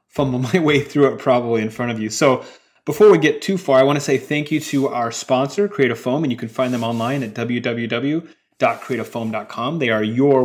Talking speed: 210 wpm